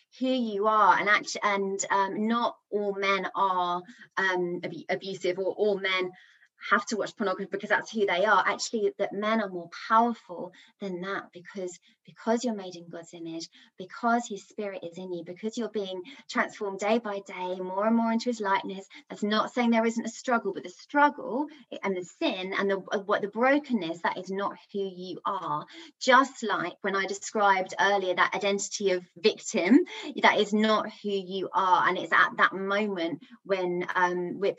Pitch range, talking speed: 180-215 Hz, 185 wpm